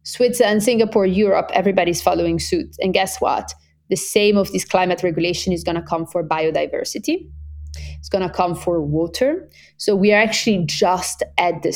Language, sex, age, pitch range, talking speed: English, female, 30-49, 165-200 Hz, 175 wpm